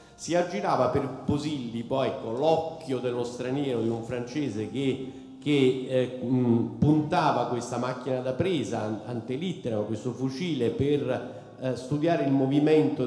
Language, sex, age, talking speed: Italian, male, 50-69, 140 wpm